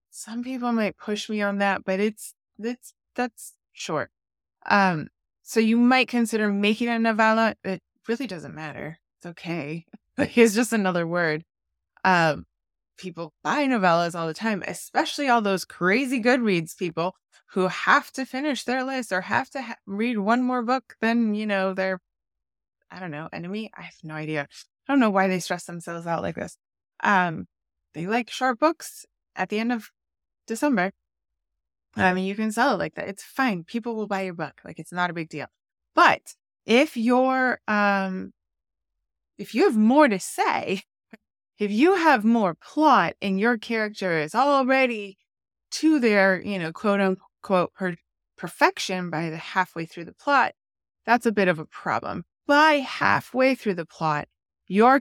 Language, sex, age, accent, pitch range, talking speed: English, female, 20-39, American, 175-245 Hz, 170 wpm